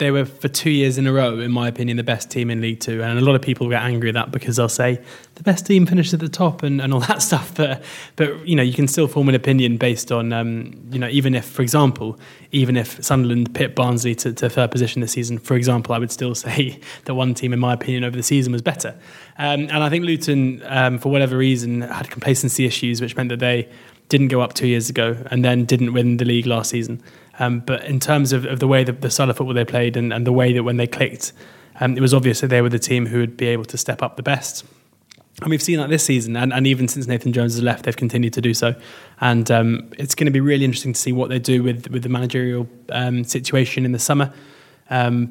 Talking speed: 265 wpm